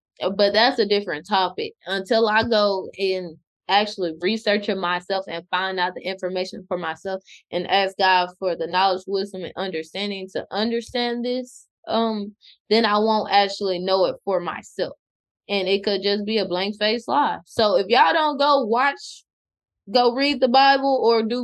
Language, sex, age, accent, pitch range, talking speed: English, female, 20-39, American, 185-220 Hz, 170 wpm